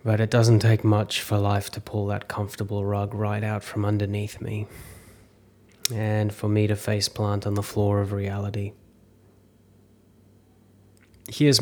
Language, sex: English, male